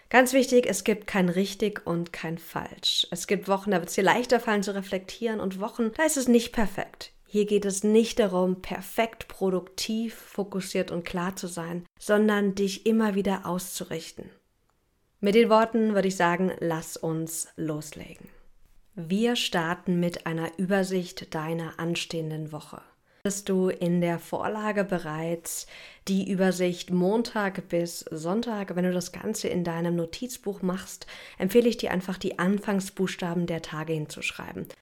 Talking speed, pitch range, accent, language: 155 wpm, 170-205 Hz, German, German